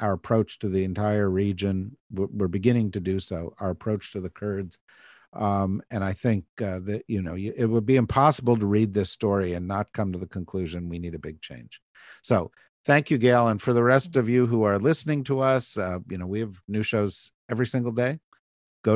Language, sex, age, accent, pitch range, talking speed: English, male, 50-69, American, 95-115 Hz, 220 wpm